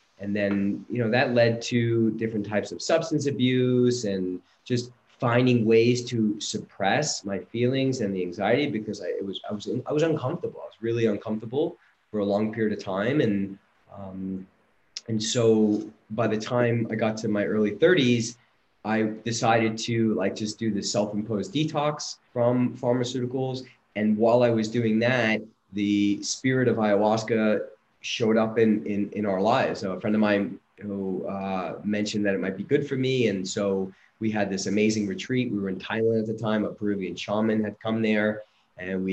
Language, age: English, 30-49